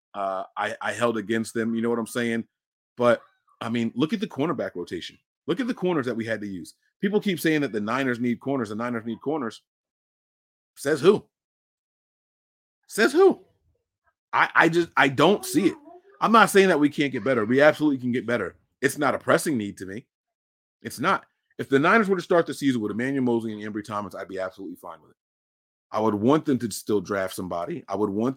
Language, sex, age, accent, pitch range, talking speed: English, male, 30-49, American, 110-155 Hz, 220 wpm